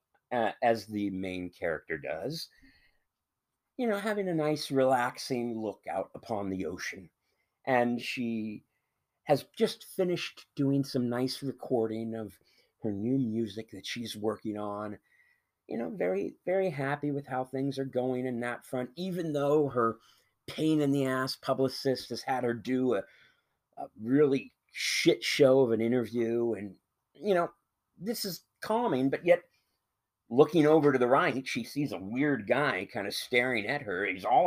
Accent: American